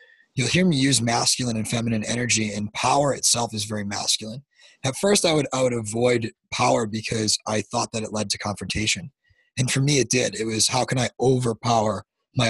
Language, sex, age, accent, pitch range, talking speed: English, male, 20-39, American, 110-130 Hz, 195 wpm